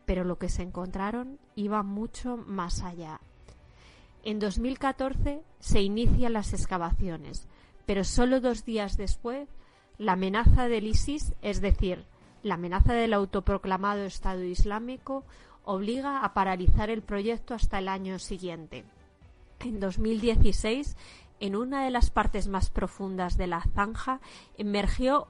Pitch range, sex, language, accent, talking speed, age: 190-235 Hz, female, Spanish, Spanish, 130 wpm, 30-49